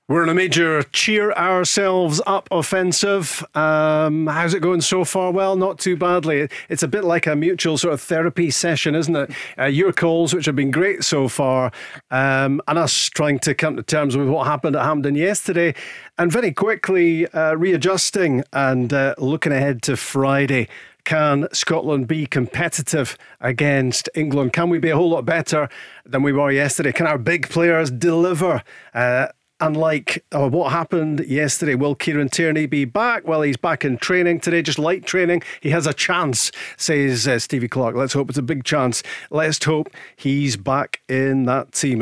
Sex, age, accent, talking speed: male, 40-59, British, 185 wpm